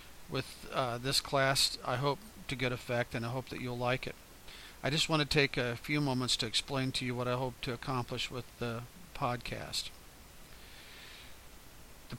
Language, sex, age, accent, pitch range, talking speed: English, male, 50-69, American, 120-135 Hz, 180 wpm